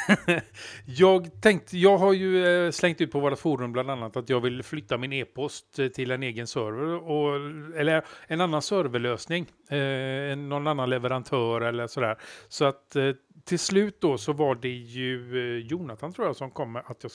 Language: Swedish